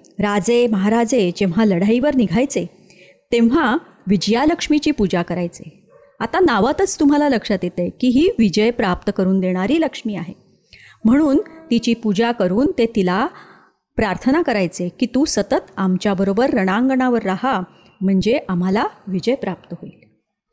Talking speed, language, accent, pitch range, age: 120 wpm, Marathi, native, 195-280 Hz, 30-49